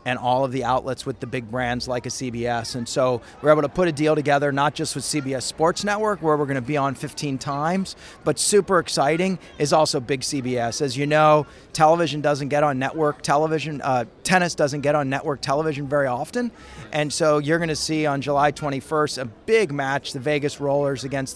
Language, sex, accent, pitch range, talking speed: English, male, American, 140-160 Hz, 210 wpm